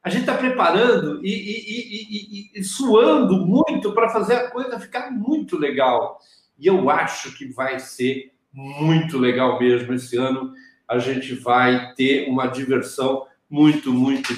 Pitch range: 150-225 Hz